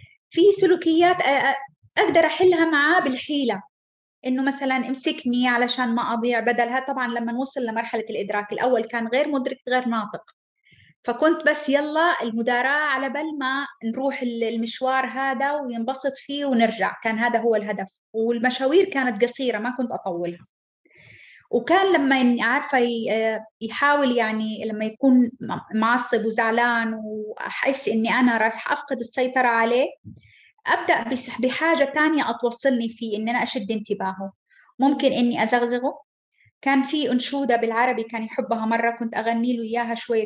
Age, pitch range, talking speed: 20-39, 225-275 Hz, 130 wpm